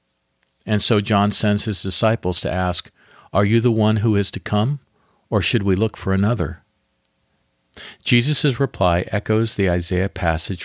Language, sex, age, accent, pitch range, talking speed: English, male, 50-69, American, 85-110 Hz, 160 wpm